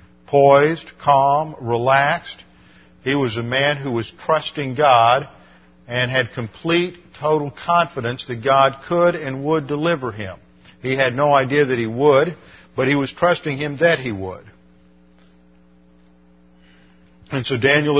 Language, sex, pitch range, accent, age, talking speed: English, male, 105-145 Hz, American, 50-69, 135 wpm